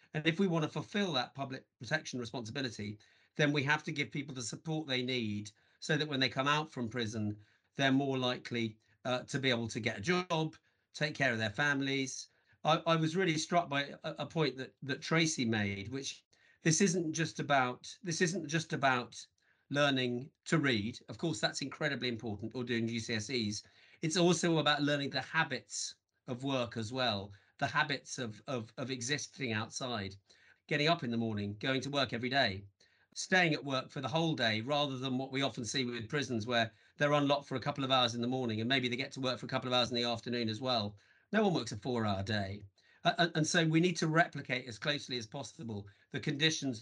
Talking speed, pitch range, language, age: 210 wpm, 120-155 Hz, English, 40-59